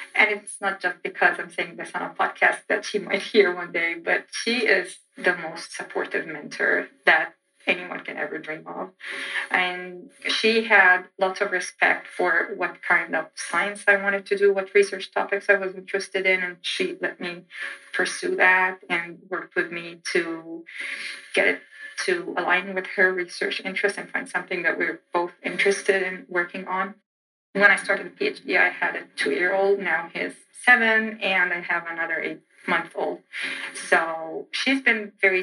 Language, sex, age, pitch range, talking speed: English, female, 30-49, 180-220 Hz, 175 wpm